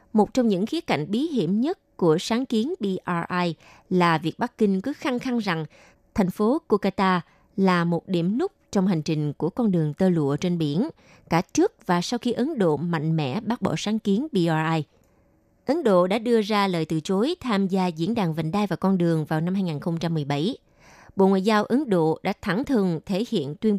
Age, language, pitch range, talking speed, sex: 20-39, Vietnamese, 170-225 Hz, 205 wpm, female